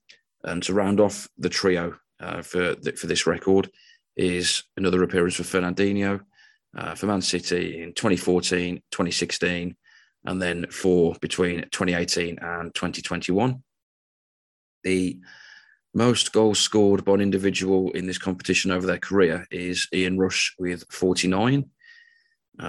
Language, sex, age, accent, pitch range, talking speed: English, male, 30-49, British, 90-100 Hz, 130 wpm